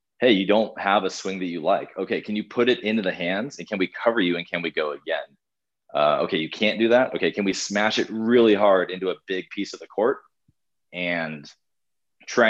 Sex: male